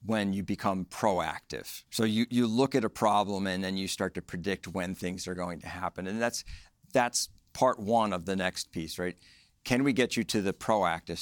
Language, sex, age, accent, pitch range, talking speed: English, male, 50-69, American, 90-115 Hz, 215 wpm